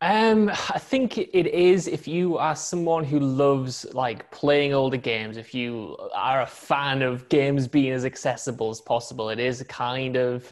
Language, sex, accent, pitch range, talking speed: English, male, British, 125-155 Hz, 185 wpm